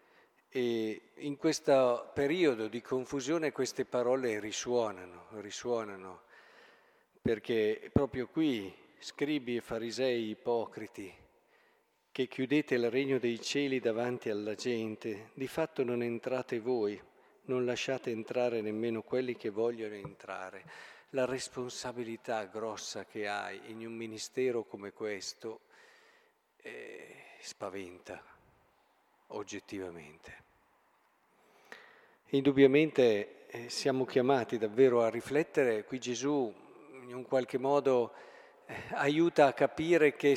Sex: male